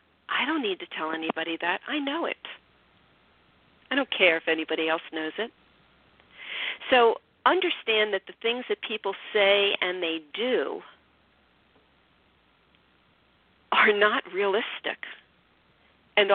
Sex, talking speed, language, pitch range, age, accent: female, 120 wpm, English, 165-225 Hz, 50-69, American